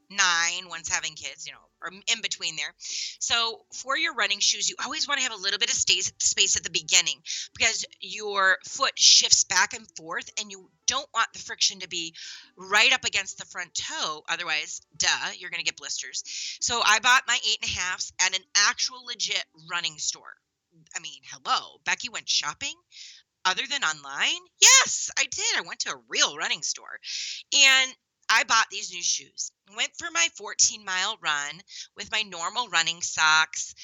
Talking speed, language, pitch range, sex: 190 wpm, English, 170-225 Hz, female